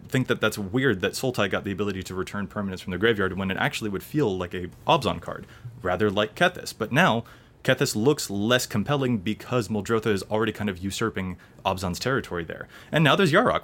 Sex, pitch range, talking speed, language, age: male, 100-140 Hz, 205 wpm, English, 20-39